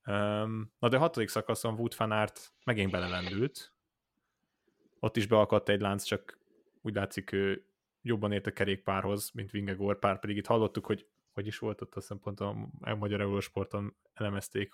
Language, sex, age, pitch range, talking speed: Hungarian, male, 20-39, 95-115 Hz, 155 wpm